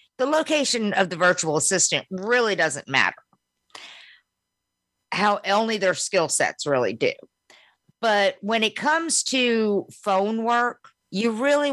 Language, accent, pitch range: English, American, 170-225 Hz